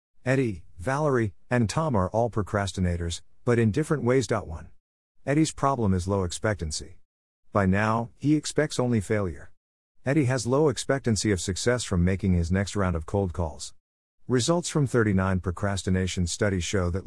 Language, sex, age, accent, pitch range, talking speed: English, male, 50-69, American, 90-115 Hz, 150 wpm